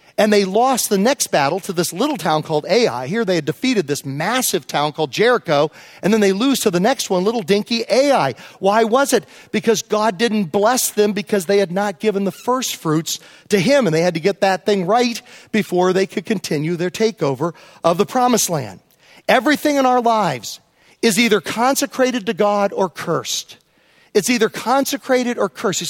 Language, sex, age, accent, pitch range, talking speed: English, male, 40-59, American, 175-235 Hz, 195 wpm